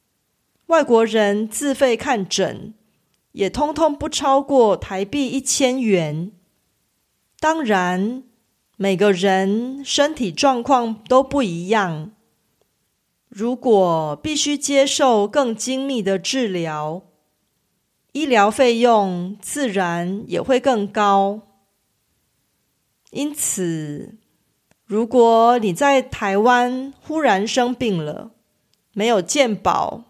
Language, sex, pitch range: Korean, female, 190-265 Hz